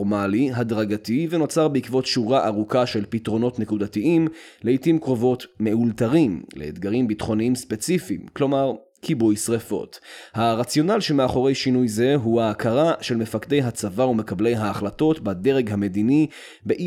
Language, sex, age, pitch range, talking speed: Hebrew, male, 30-49, 110-140 Hz, 110 wpm